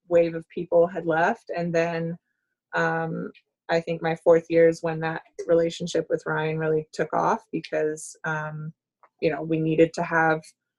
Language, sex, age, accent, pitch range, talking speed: English, female, 20-39, American, 160-175 Hz, 165 wpm